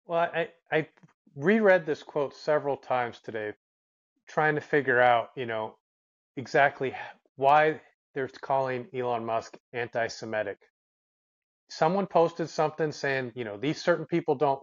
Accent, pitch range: American, 115-150 Hz